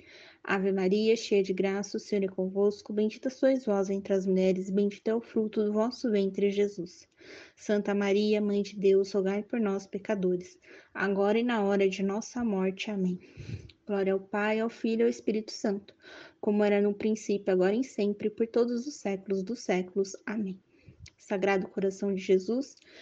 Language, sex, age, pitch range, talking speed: Portuguese, female, 20-39, 195-245 Hz, 175 wpm